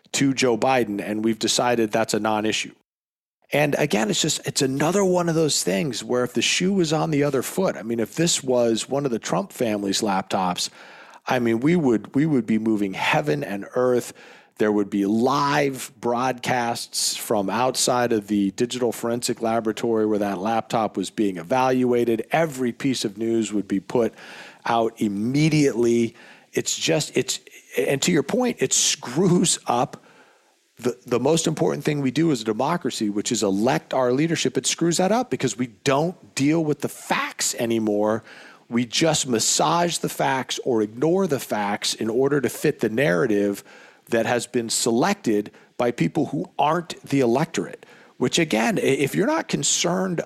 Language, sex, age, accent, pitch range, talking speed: English, male, 40-59, American, 110-145 Hz, 175 wpm